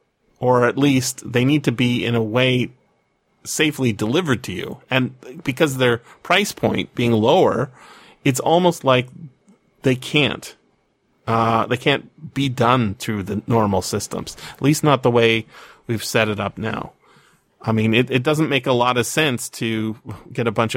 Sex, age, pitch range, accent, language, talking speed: male, 30-49, 110-145 Hz, American, English, 175 wpm